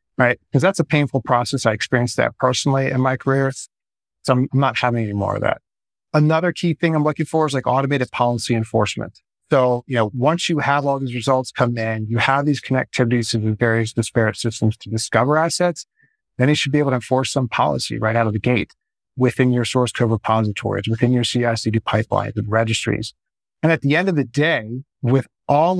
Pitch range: 115-140 Hz